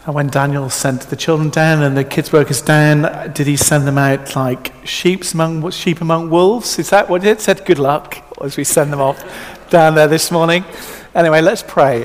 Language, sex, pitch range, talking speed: English, male, 125-160 Hz, 200 wpm